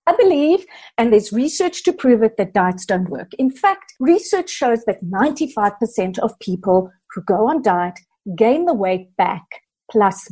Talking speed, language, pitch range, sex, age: 170 wpm, English, 210-310 Hz, female, 50-69